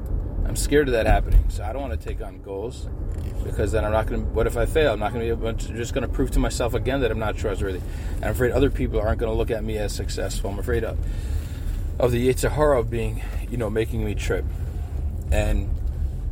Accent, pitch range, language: American, 80-115 Hz, English